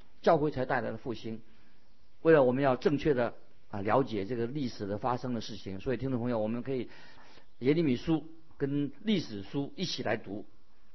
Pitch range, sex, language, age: 120-150 Hz, male, Chinese, 50-69